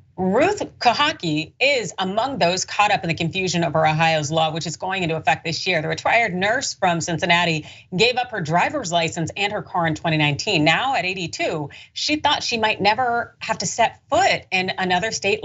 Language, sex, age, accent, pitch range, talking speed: English, female, 30-49, American, 165-225 Hz, 195 wpm